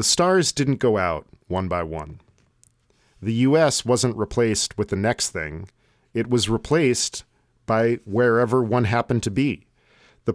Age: 40-59